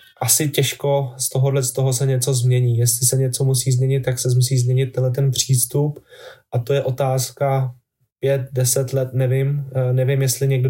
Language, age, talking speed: Czech, 20-39, 180 wpm